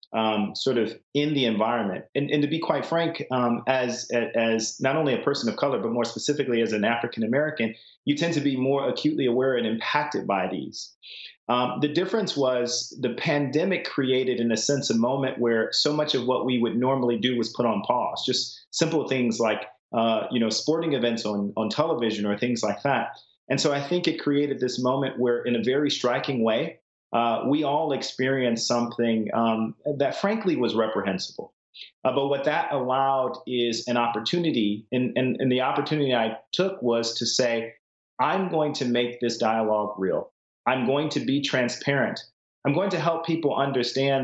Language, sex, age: English, male, 30-49